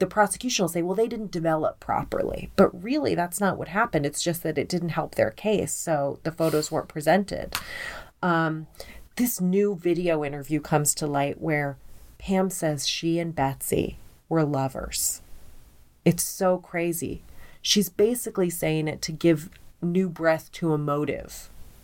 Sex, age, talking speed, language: female, 30-49, 160 wpm, English